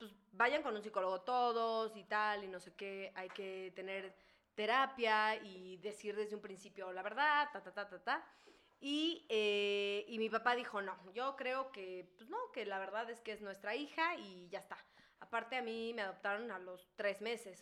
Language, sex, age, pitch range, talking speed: Spanish, female, 20-39, 195-230 Hz, 205 wpm